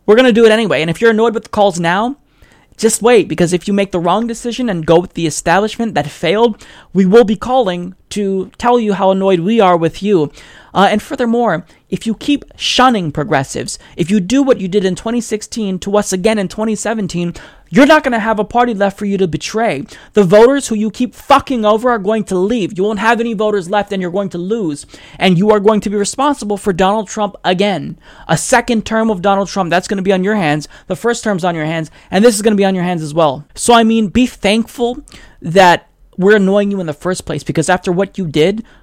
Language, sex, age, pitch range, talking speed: English, male, 30-49, 175-225 Hz, 245 wpm